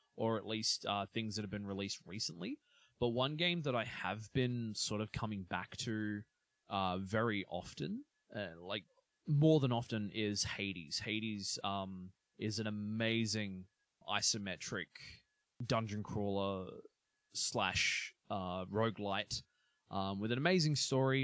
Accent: Australian